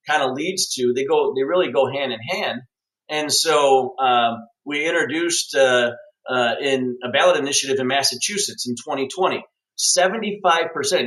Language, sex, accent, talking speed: English, male, American, 145 wpm